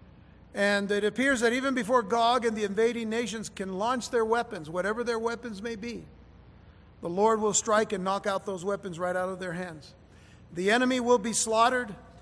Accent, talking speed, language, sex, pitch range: American, 190 wpm, English, male, 175-235 Hz